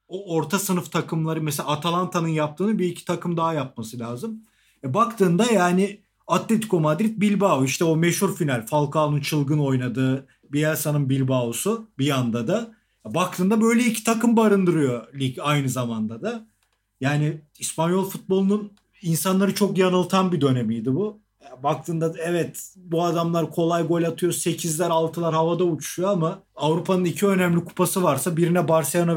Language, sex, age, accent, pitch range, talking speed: Turkish, male, 40-59, native, 145-180 Hz, 145 wpm